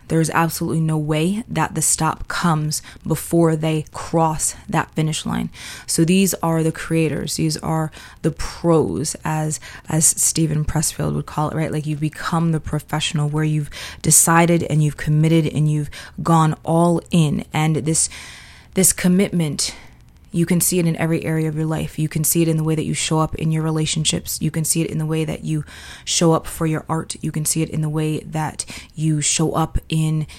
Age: 20-39